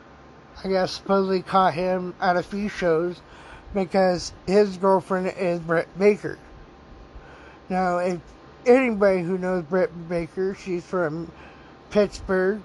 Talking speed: 120 wpm